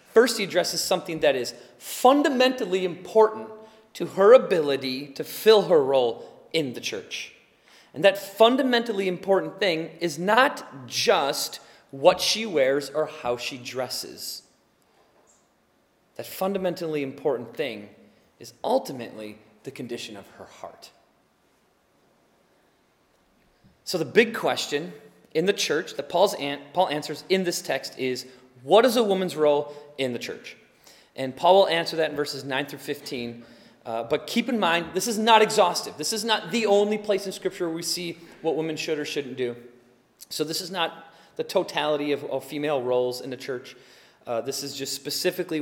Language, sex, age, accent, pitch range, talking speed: English, male, 30-49, American, 135-190 Hz, 160 wpm